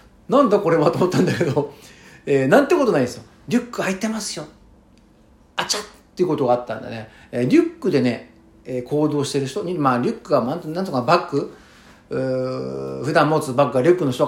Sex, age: male, 50-69